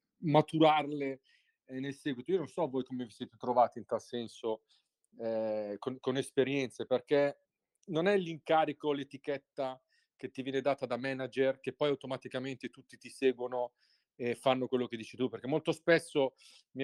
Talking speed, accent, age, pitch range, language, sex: 160 wpm, native, 40-59, 125-145 Hz, Italian, male